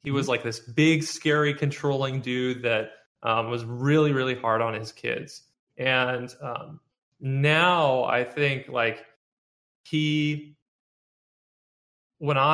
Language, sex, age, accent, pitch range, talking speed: English, male, 20-39, American, 120-145 Hz, 120 wpm